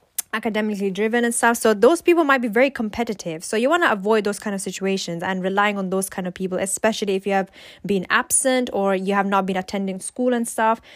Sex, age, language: female, 10-29, English